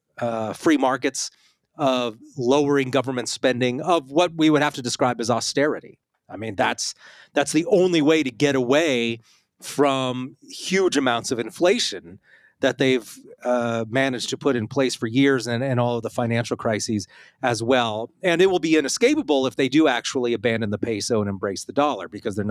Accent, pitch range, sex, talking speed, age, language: American, 110-140 Hz, male, 185 wpm, 30-49, English